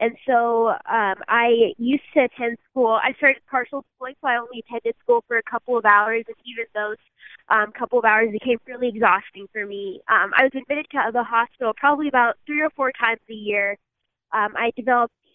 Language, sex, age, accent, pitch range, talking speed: English, female, 20-39, American, 215-250 Hz, 205 wpm